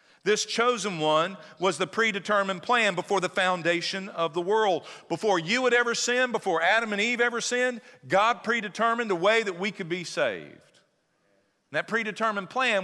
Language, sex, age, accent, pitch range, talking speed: English, male, 50-69, American, 145-200 Hz, 175 wpm